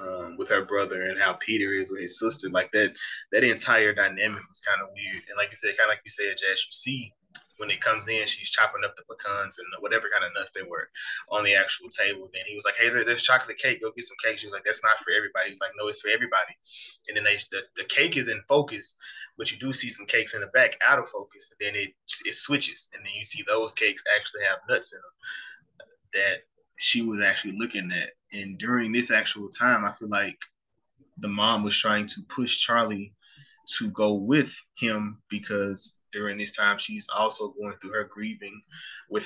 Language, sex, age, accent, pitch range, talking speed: English, male, 20-39, American, 100-125 Hz, 230 wpm